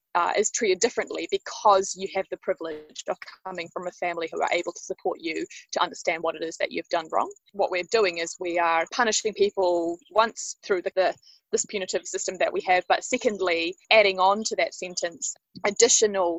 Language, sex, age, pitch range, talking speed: English, female, 20-39, 175-225 Hz, 200 wpm